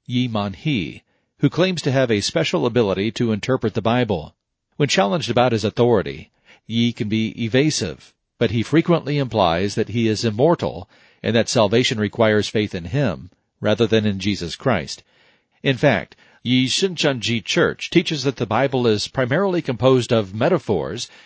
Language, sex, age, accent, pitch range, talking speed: English, male, 40-59, American, 105-130 Hz, 160 wpm